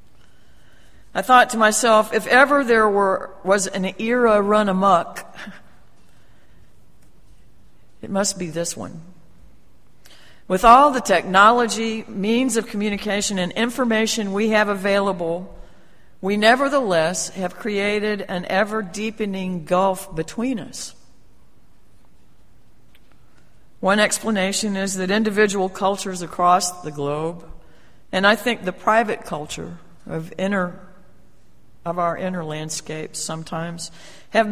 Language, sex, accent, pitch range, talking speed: English, female, American, 175-215 Hz, 110 wpm